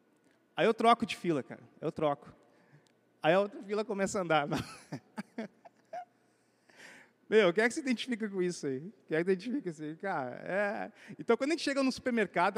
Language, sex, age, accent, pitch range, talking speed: Portuguese, male, 30-49, Brazilian, 195-275 Hz, 195 wpm